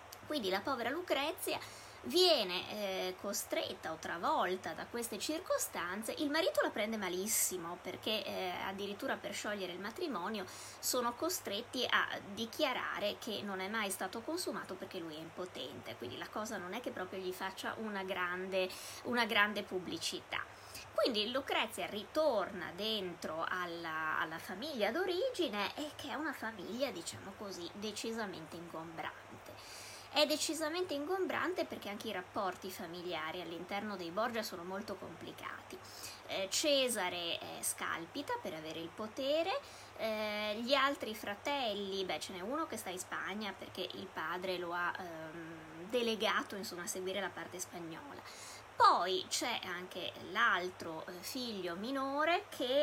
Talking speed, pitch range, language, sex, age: 135 wpm, 185-285 Hz, Italian, female, 20-39